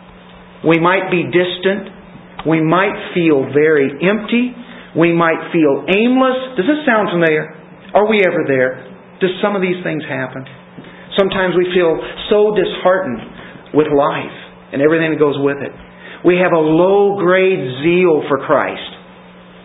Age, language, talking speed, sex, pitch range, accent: 50-69, English, 145 wpm, male, 155-200 Hz, American